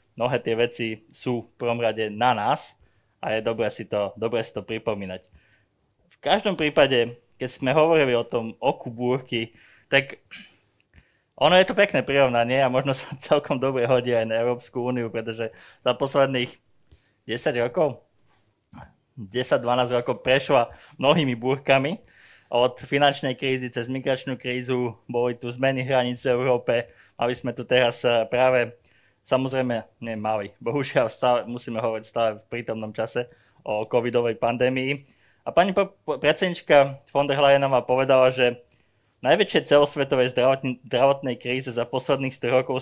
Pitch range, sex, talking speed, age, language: 115-135 Hz, male, 140 wpm, 20-39, Slovak